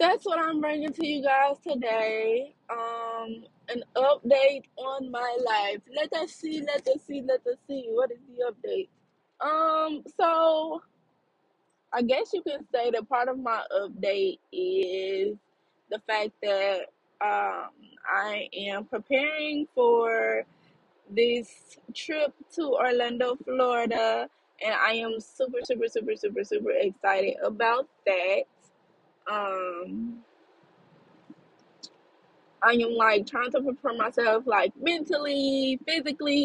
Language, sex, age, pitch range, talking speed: English, female, 20-39, 225-310 Hz, 125 wpm